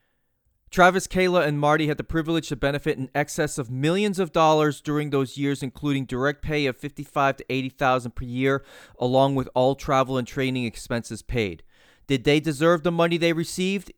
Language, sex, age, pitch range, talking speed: English, male, 30-49, 130-160 Hz, 180 wpm